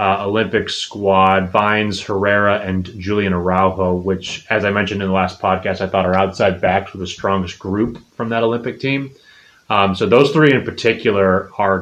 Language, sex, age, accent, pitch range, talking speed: English, male, 20-39, American, 95-110 Hz, 185 wpm